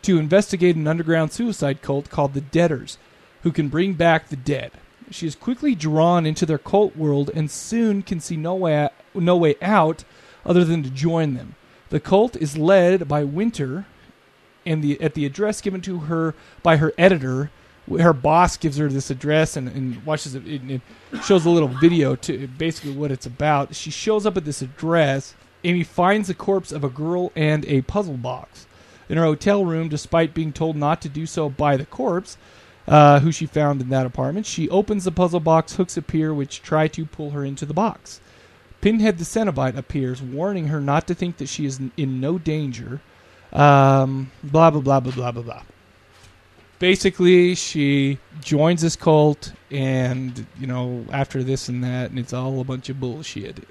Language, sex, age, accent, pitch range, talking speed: English, male, 40-59, American, 140-175 Hz, 190 wpm